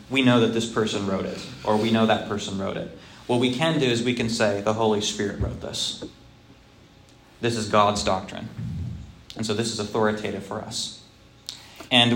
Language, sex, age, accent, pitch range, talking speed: English, male, 20-39, American, 105-130 Hz, 190 wpm